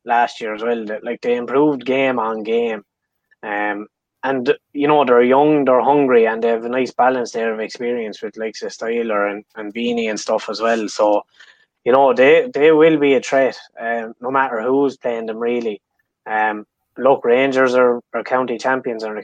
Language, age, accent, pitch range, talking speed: English, 20-39, Irish, 115-140 Hz, 185 wpm